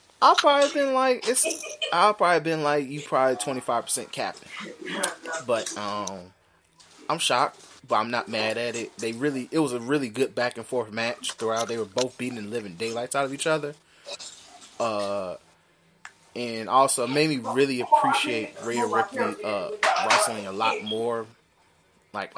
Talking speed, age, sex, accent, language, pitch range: 175 wpm, 20-39, male, American, English, 115-150 Hz